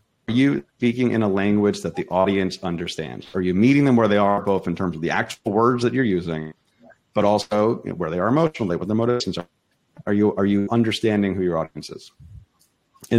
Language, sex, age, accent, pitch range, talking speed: English, male, 30-49, American, 95-120 Hz, 215 wpm